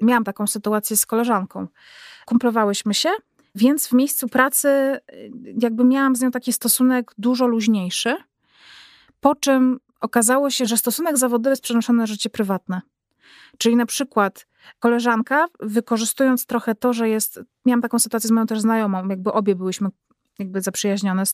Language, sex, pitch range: Polish, female, 210-240 Hz